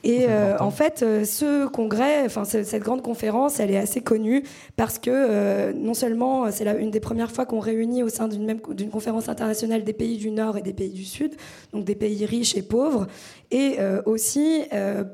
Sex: female